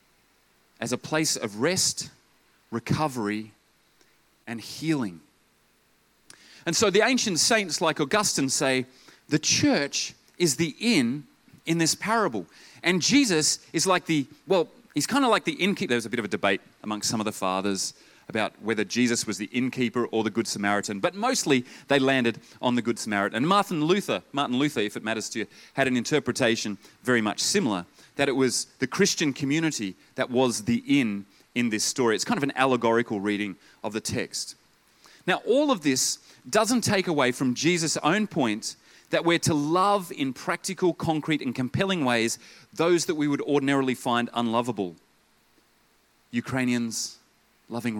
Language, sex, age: English, male, 30-49